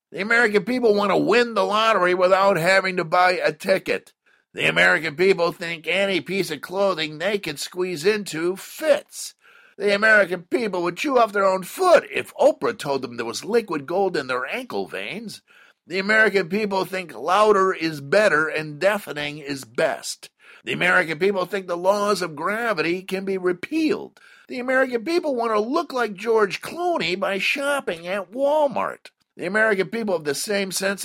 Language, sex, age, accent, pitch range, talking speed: English, male, 50-69, American, 180-235 Hz, 175 wpm